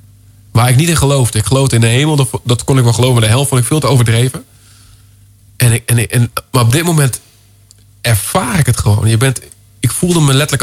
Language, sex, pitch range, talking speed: Dutch, male, 110-135 Hz, 230 wpm